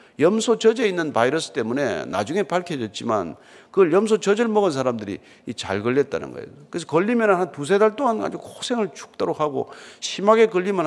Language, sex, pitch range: Korean, male, 140-225 Hz